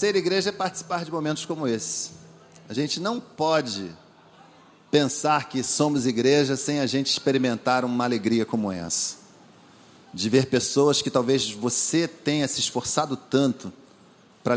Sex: male